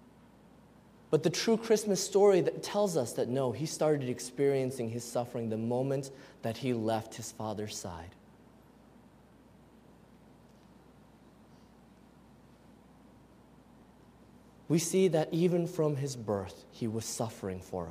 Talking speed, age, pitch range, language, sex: 115 wpm, 20-39, 120-200 Hz, English, male